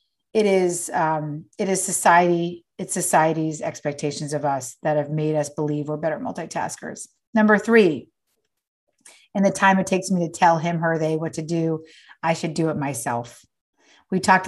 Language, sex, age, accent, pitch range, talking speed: German, female, 40-59, American, 165-215 Hz, 175 wpm